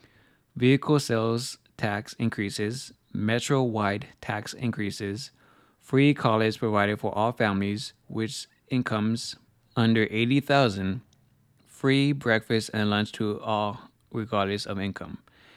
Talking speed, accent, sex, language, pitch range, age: 110 wpm, American, male, English, 105-125 Hz, 20-39